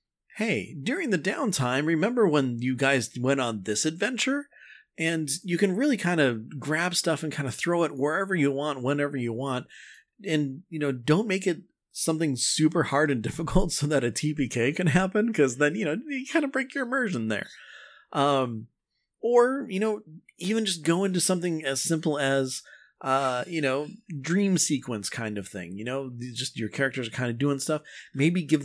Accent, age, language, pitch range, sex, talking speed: American, 30-49, English, 130-175 Hz, male, 190 wpm